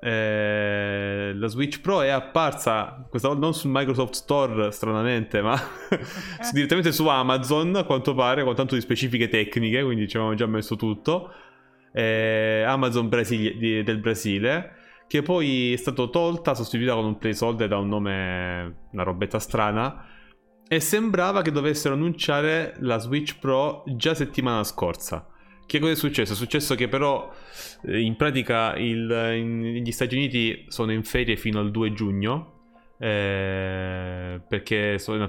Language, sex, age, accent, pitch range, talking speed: Italian, male, 20-39, native, 100-135 Hz, 150 wpm